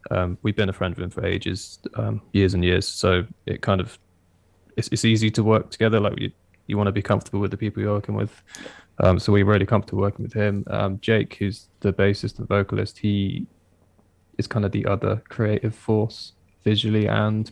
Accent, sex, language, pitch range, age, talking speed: British, male, English, 100-110 Hz, 20-39, 210 wpm